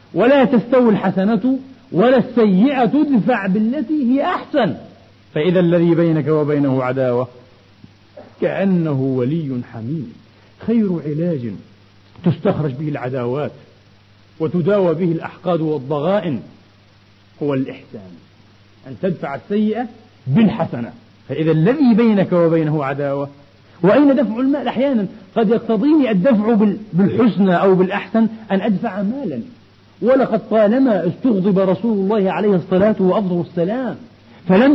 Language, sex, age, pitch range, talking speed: Arabic, male, 40-59, 155-230 Hz, 105 wpm